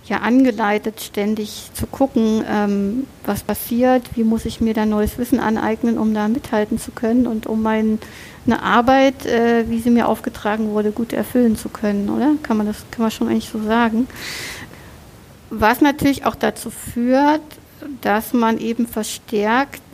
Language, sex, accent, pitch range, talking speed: German, female, German, 210-235 Hz, 165 wpm